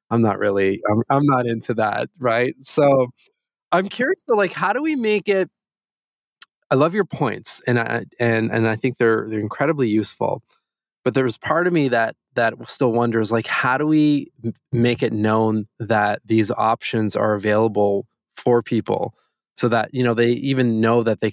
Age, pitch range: 20-39, 110-140 Hz